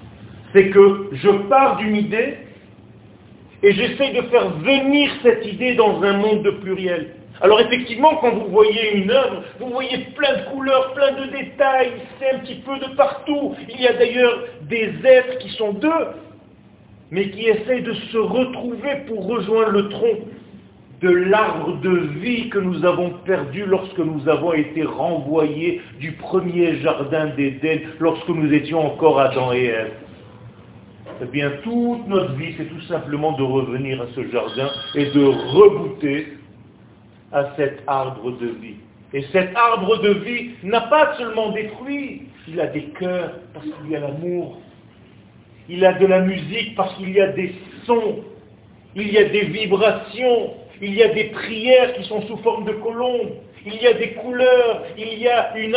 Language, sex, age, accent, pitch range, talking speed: French, male, 50-69, French, 155-235 Hz, 170 wpm